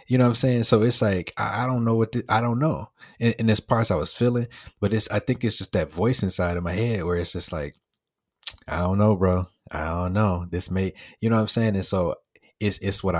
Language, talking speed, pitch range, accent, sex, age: English, 270 wpm, 90-105 Hz, American, male, 30-49